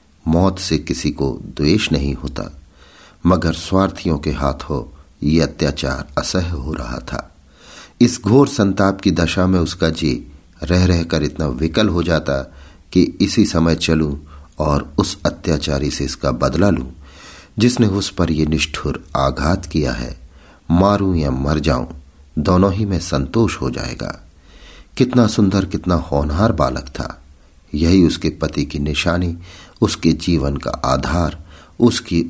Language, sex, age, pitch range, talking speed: Hindi, male, 50-69, 70-95 Hz, 140 wpm